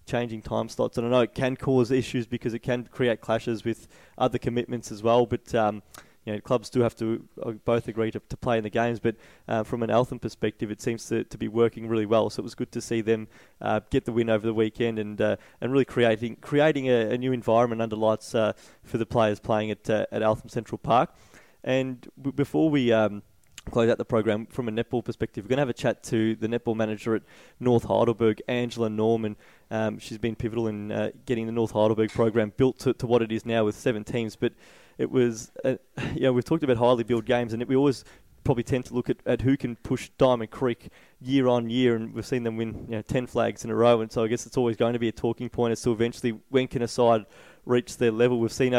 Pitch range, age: 110-125 Hz, 20-39